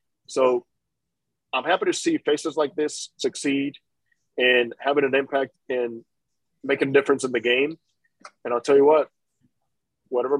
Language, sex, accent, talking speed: English, male, American, 150 wpm